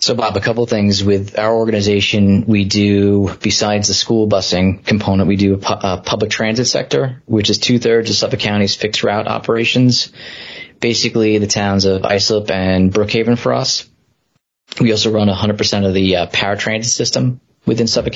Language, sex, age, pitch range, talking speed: English, male, 20-39, 100-110 Hz, 180 wpm